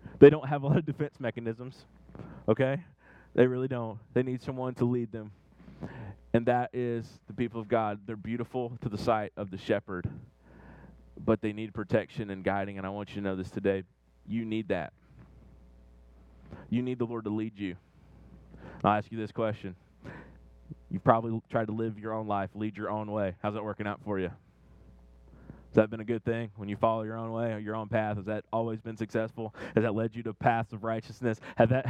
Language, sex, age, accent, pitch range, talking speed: English, male, 30-49, American, 110-135 Hz, 205 wpm